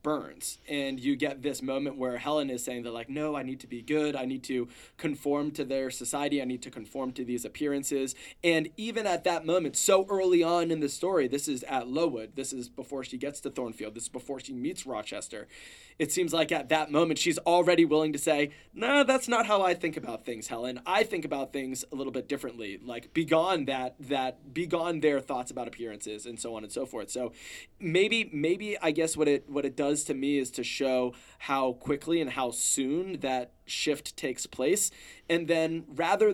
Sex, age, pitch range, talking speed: male, 20-39, 130-165 Hz, 220 wpm